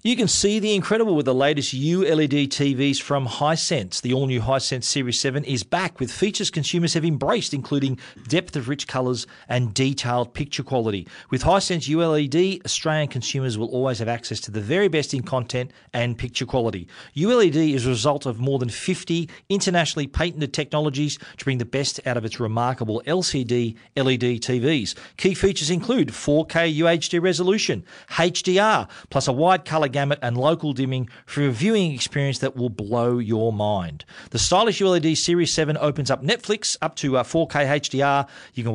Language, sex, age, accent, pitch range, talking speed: English, male, 40-59, Australian, 125-165 Hz, 170 wpm